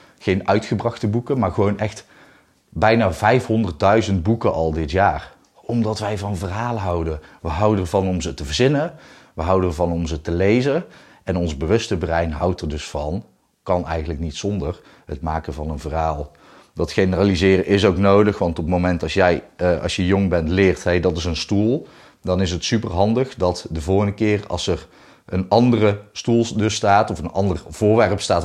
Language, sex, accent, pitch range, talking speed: Dutch, male, Dutch, 85-105 Hz, 190 wpm